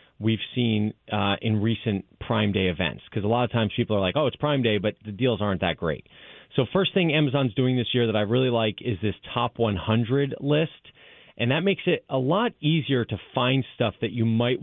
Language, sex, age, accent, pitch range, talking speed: English, male, 30-49, American, 105-130 Hz, 225 wpm